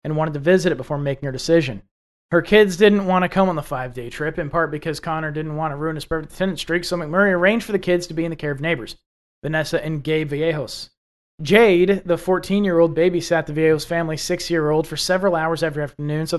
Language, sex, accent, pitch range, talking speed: English, male, American, 155-185 Hz, 225 wpm